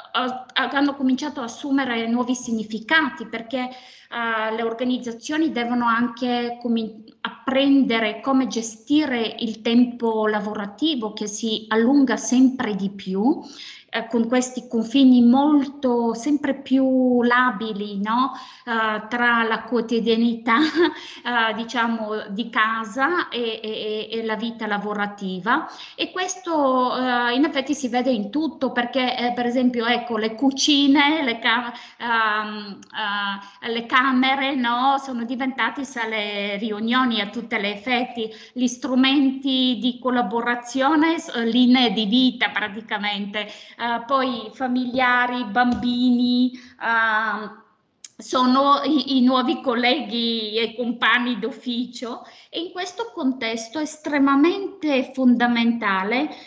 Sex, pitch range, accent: female, 225-270 Hz, native